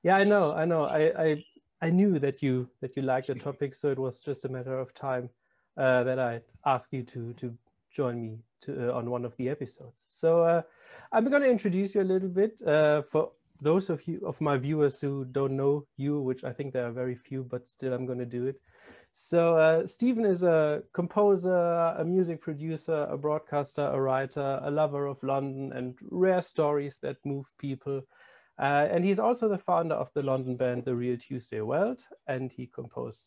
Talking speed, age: 210 wpm, 30-49